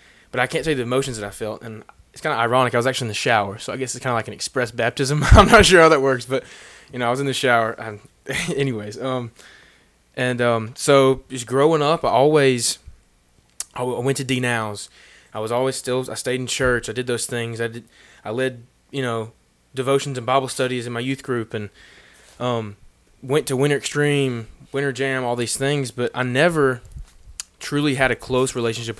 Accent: American